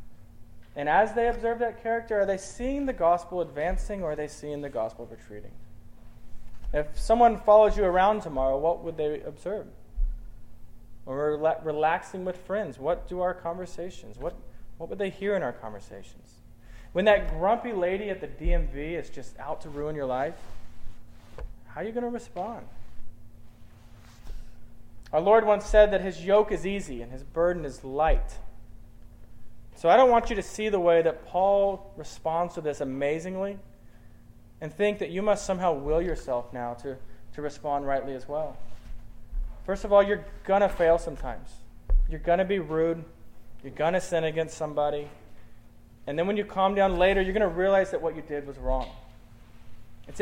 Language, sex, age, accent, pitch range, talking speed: English, male, 20-39, American, 115-190 Hz, 175 wpm